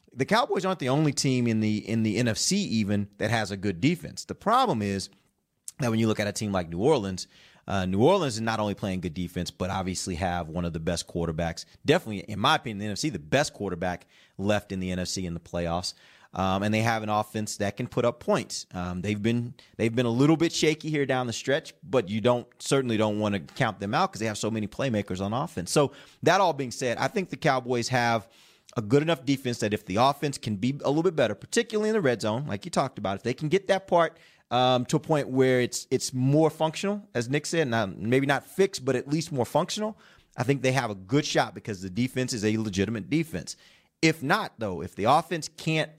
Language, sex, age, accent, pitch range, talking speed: English, male, 30-49, American, 105-150 Hz, 245 wpm